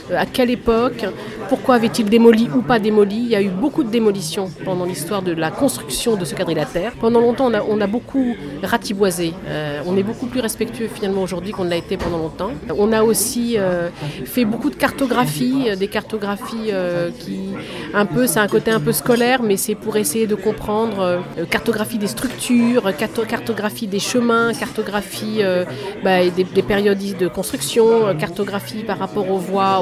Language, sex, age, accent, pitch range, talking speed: French, female, 30-49, French, 195-235 Hz, 185 wpm